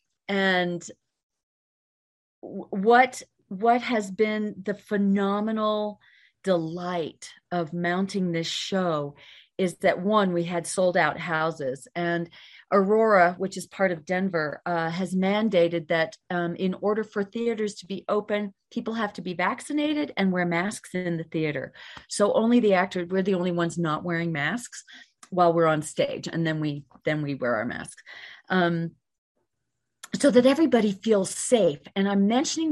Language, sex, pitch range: English, female, 170-210 Hz